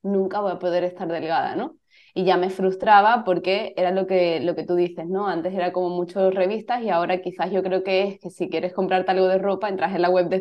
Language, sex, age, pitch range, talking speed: Spanish, female, 20-39, 175-200 Hz, 255 wpm